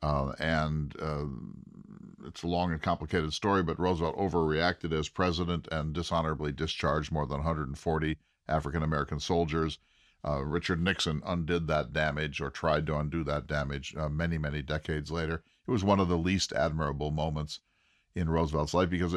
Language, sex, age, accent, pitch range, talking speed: English, male, 50-69, American, 75-90 Hz, 160 wpm